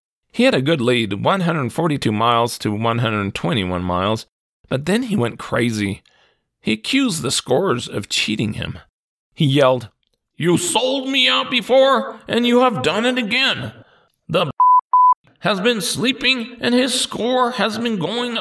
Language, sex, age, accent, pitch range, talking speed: English, male, 40-59, American, 110-185 Hz, 145 wpm